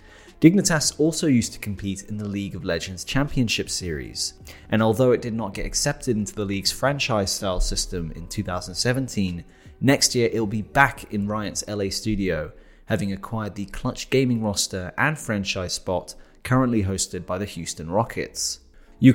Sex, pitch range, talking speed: male, 95-120 Hz, 160 wpm